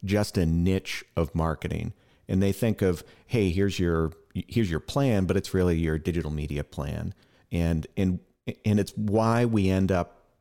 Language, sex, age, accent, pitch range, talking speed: English, male, 50-69, American, 85-100 Hz, 175 wpm